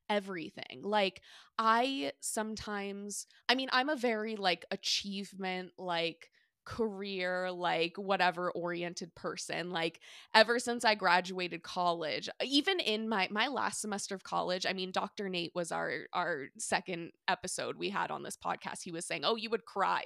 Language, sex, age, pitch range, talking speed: English, female, 20-39, 180-225 Hz, 155 wpm